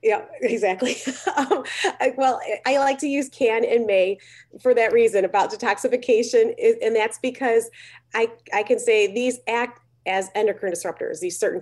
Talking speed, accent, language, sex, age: 150 wpm, American, English, female, 30-49